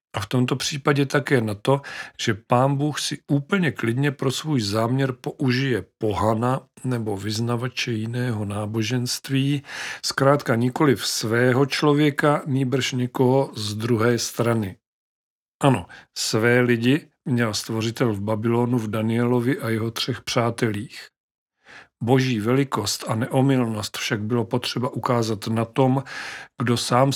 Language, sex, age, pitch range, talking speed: Czech, male, 40-59, 115-135 Hz, 125 wpm